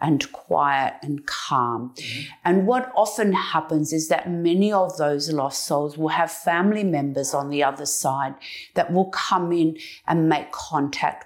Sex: female